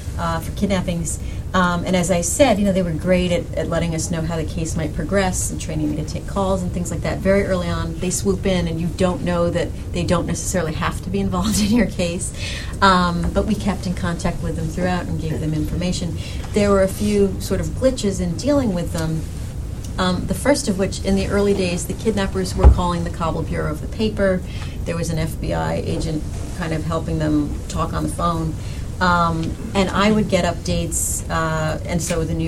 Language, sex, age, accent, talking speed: English, female, 40-59, American, 225 wpm